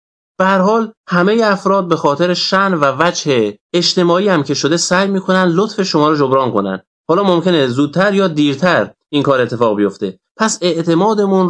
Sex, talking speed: male, 155 wpm